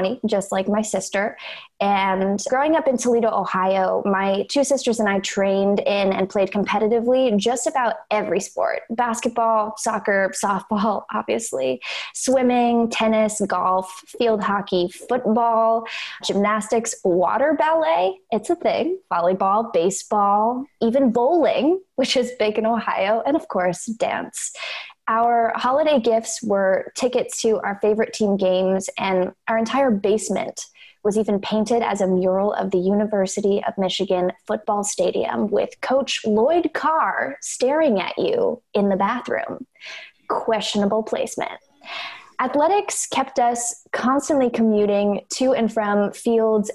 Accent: American